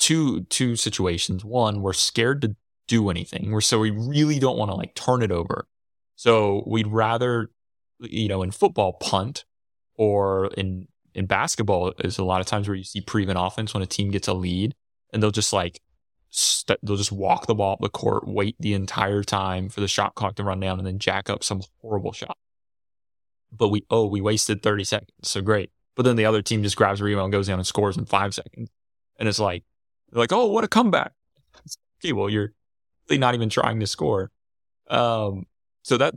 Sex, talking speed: male, 205 wpm